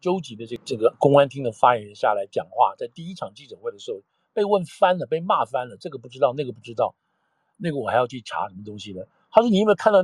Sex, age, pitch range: male, 50-69, 115-165 Hz